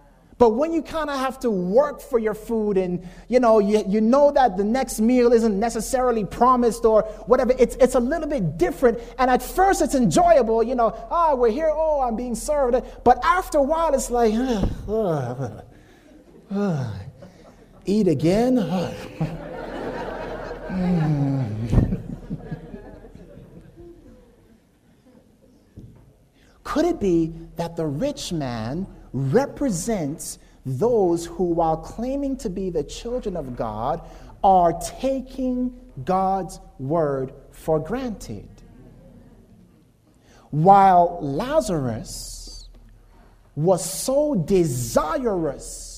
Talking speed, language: 115 wpm, English